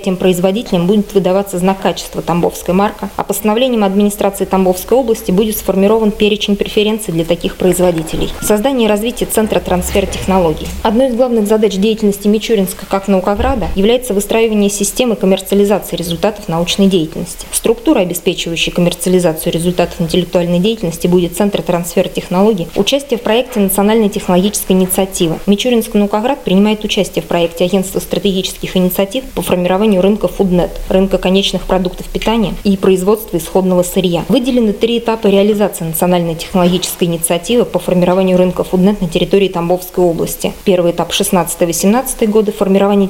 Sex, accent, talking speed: female, native, 135 wpm